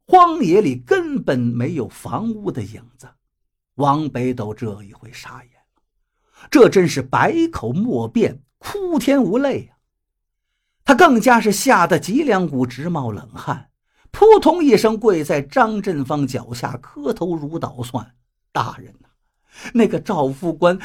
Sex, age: male, 50-69